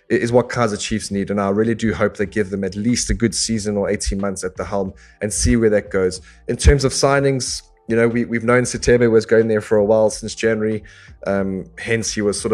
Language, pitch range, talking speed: English, 100-120 Hz, 245 wpm